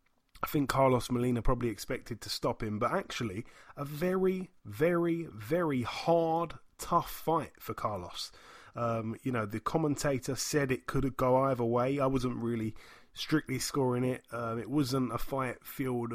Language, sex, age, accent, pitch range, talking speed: English, male, 30-49, British, 120-150 Hz, 160 wpm